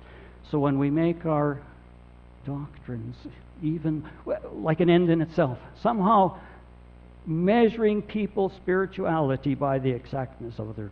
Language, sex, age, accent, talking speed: English, male, 60-79, American, 115 wpm